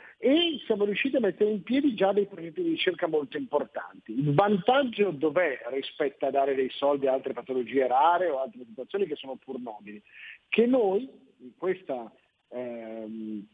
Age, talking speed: 50-69, 170 wpm